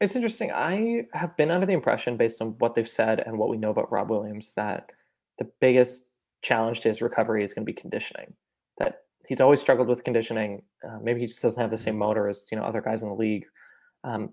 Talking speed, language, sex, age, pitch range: 235 wpm, English, male, 20-39, 110-150 Hz